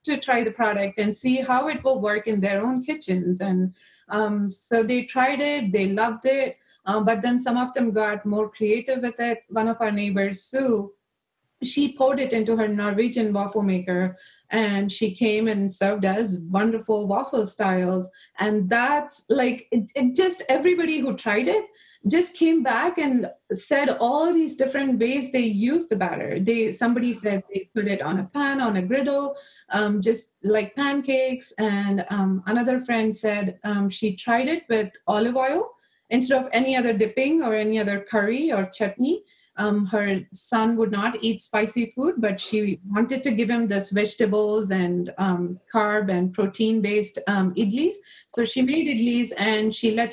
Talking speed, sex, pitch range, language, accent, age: 175 wpm, female, 210-265 Hz, English, Indian, 30-49